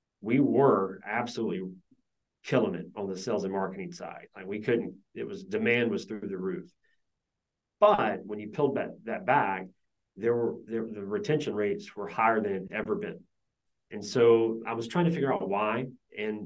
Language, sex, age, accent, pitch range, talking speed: English, male, 30-49, American, 105-130 Hz, 185 wpm